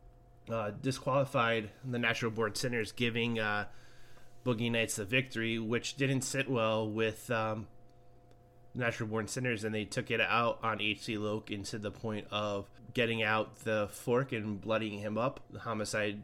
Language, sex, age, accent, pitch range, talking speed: English, male, 20-39, American, 105-120 Hz, 160 wpm